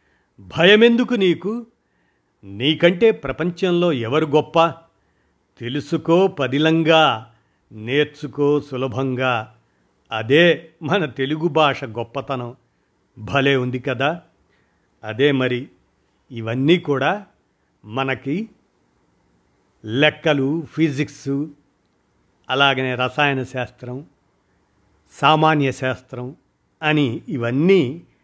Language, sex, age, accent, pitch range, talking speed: Telugu, male, 50-69, native, 115-155 Hz, 70 wpm